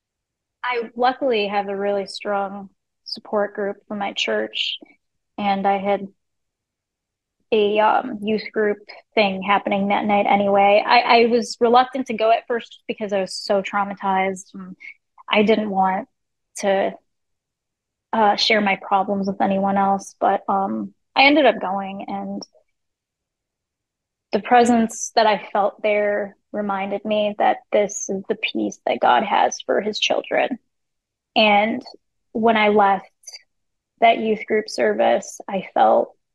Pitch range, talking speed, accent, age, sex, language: 195-220 Hz, 140 wpm, American, 20-39, female, English